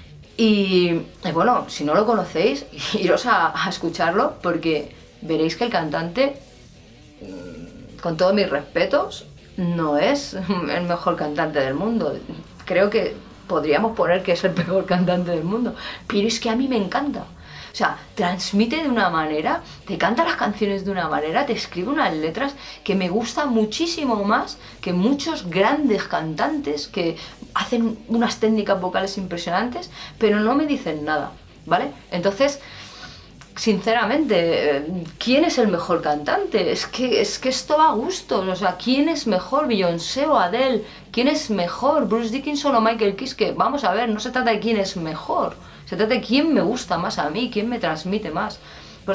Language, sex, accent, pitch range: Spanish, female, Spanish, 180-245 Hz